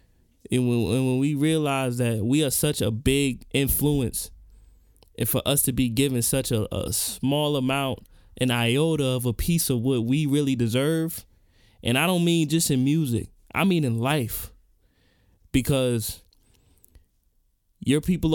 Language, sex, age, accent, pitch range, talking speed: English, male, 20-39, American, 115-150 Hz, 155 wpm